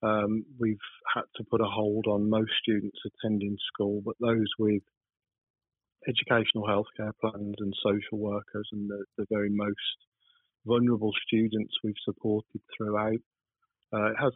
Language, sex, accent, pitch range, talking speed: English, male, British, 105-115 Hz, 145 wpm